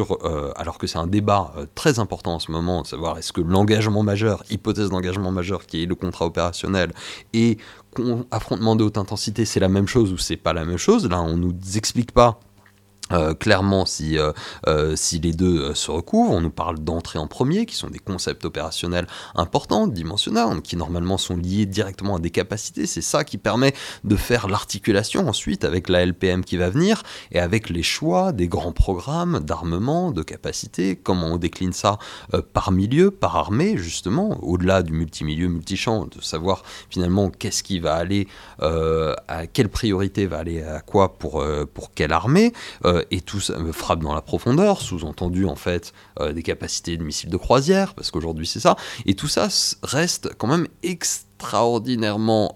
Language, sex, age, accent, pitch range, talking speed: French, male, 30-49, French, 85-110 Hz, 185 wpm